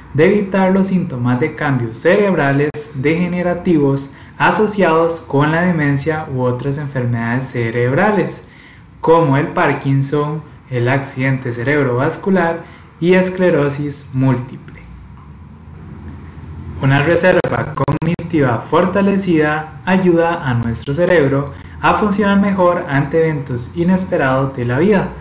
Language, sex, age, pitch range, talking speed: Spanish, male, 20-39, 130-170 Hz, 100 wpm